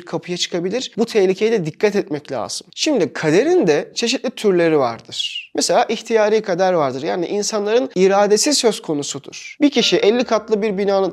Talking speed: 155 wpm